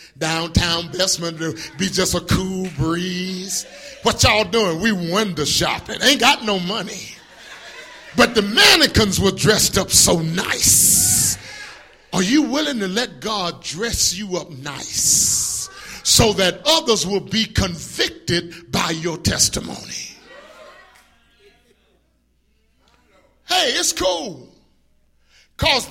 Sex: male